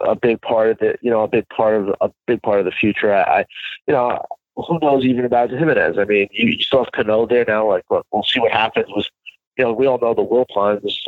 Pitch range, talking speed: 110-125 Hz, 265 wpm